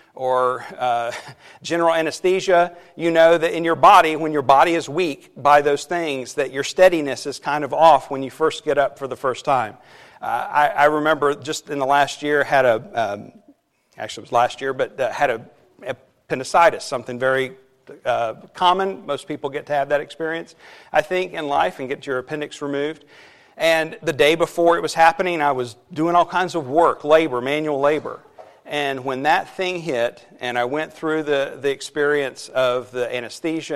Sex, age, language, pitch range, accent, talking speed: male, 40-59, English, 140-170 Hz, American, 190 wpm